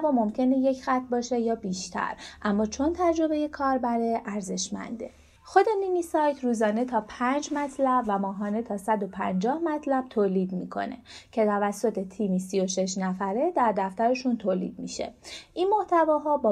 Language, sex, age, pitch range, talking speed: Persian, female, 30-49, 185-255 Hz, 145 wpm